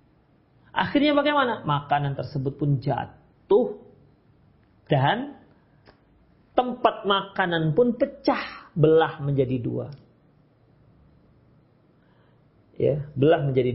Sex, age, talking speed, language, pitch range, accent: male, 40-59, 75 wpm, Indonesian, 130-185 Hz, native